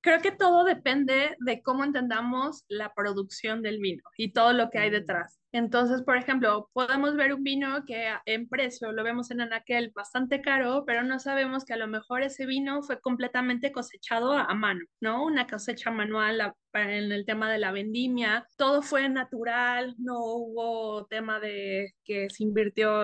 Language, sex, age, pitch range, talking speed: Spanish, female, 20-39, 210-250 Hz, 175 wpm